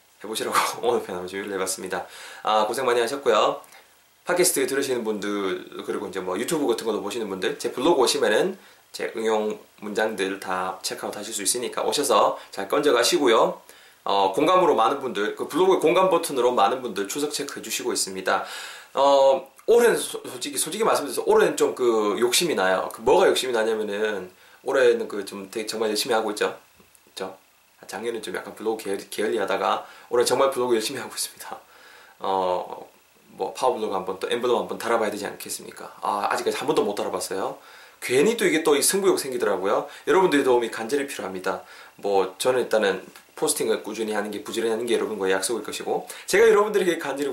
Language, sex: Korean, male